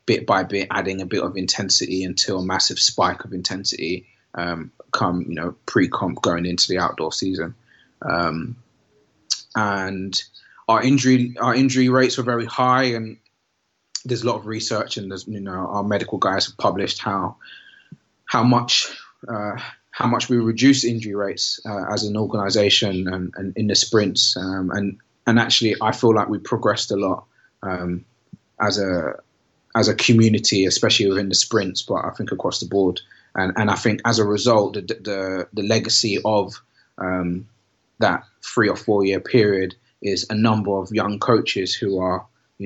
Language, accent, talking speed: English, British, 175 wpm